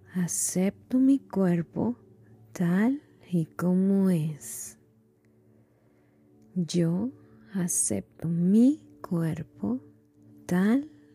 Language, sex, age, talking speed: Spanish, female, 20-39, 65 wpm